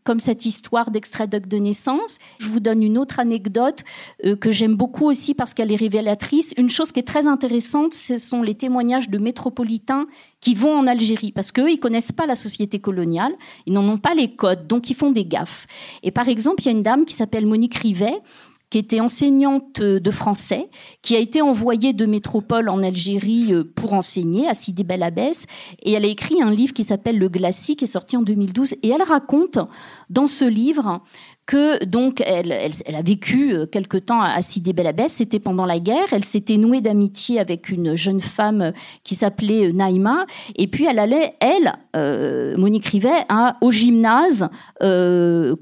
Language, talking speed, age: French, 190 wpm, 40-59